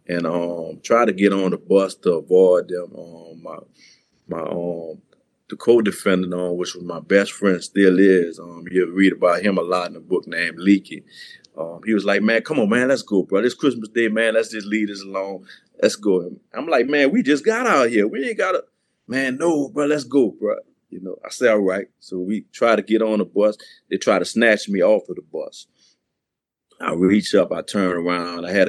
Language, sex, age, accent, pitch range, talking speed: English, male, 30-49, American, 85-105 Hz, 230 wpm